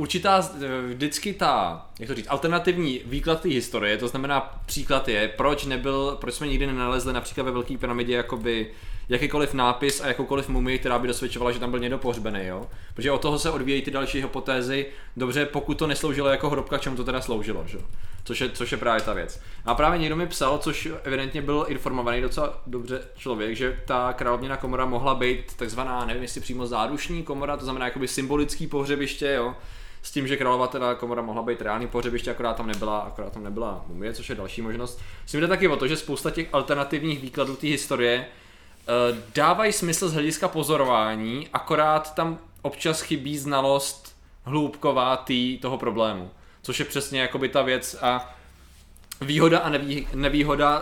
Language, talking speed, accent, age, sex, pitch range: Czech, 180 wpm, native, 20-39, male, 120-145 Hz